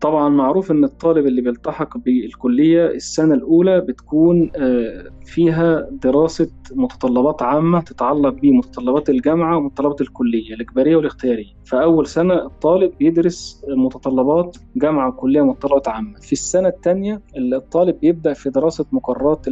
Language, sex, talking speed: Arabic, male, 115 wpm